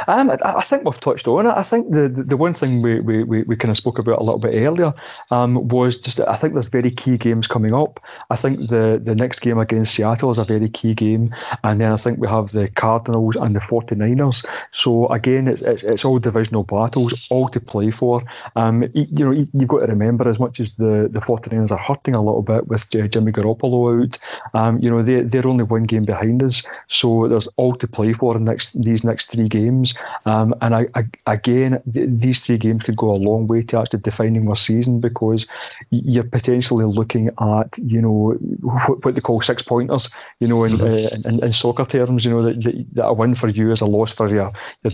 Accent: British